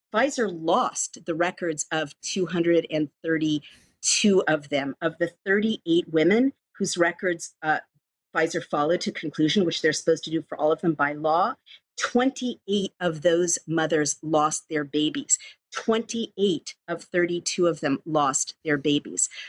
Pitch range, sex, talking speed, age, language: 155-185 Hz, female, 140 wpm, 50-69, English